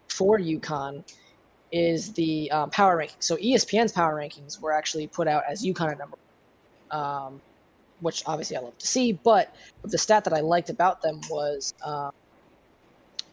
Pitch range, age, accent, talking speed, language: 160-190 Hz, 20-39, American, 170 wpm, English